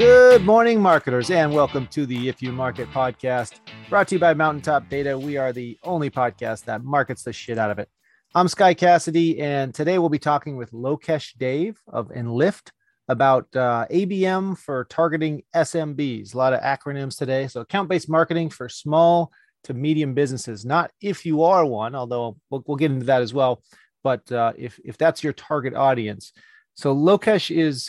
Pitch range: 125-155 Hz